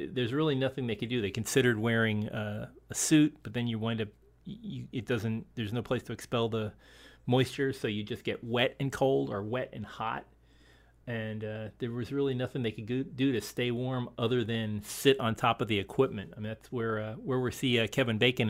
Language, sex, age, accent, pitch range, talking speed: English, male, 40-59, American, 105-125 Hz, 230 wpm